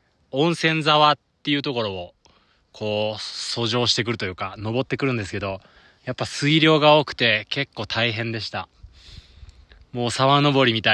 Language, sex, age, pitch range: Japanese, male, 20-39, 95-140 Hz